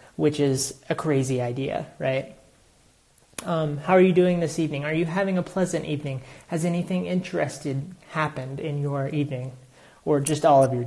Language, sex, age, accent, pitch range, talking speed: English, male, 30-49, American, 135-160 Hz, 170 wpm